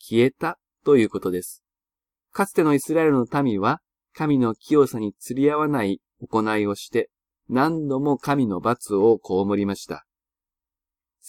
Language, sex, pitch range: Japanese, male, 100-145 Hz